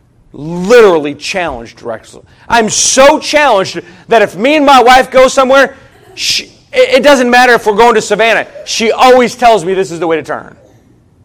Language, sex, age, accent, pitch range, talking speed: English, male, 40-59, American, 160-220 Hz, 175 wpm